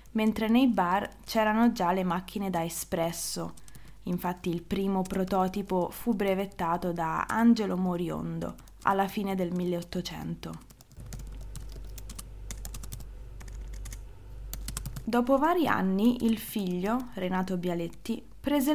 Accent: native